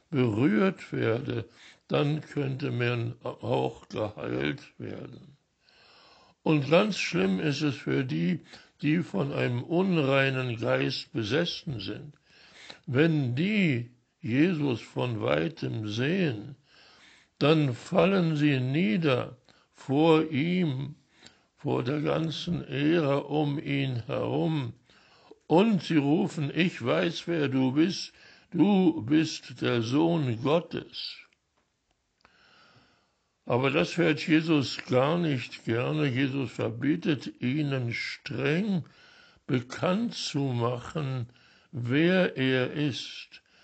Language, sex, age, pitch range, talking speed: German, male, 60-79, 125-160 Hz, 100 wpm